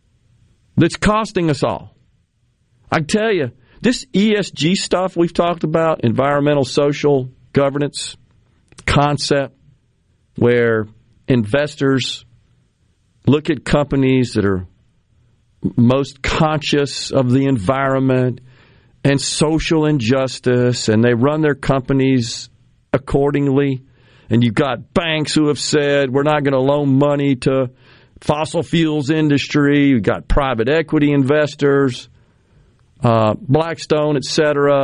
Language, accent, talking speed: English, American, 110 wpm